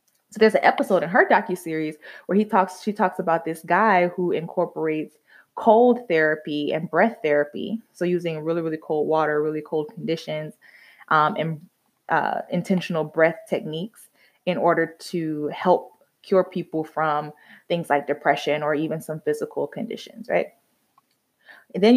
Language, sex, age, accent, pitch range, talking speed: English, female, 20-39, American, 160-210 Hz, 150 wpm